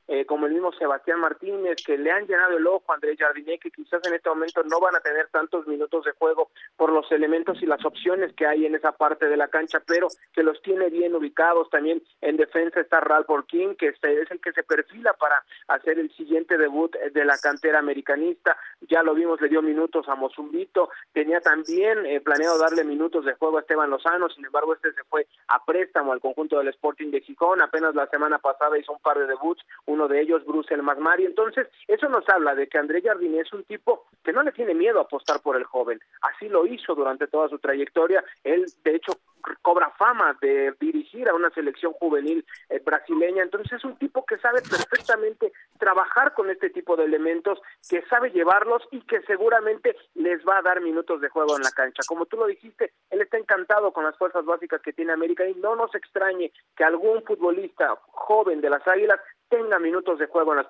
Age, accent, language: 40-59, Mexican, Spanish